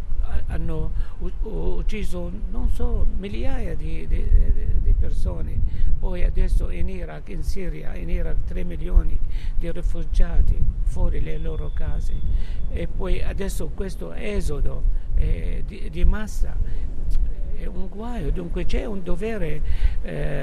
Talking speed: 115 wpm